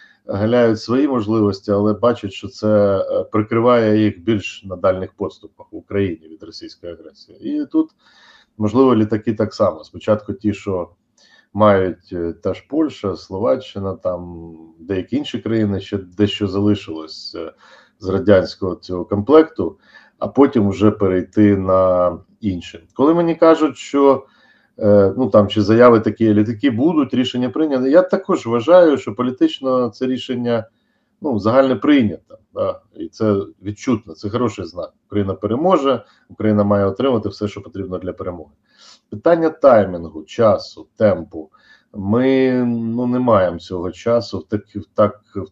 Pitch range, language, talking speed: 100-125 Hz, Ukrainian, 135 wpm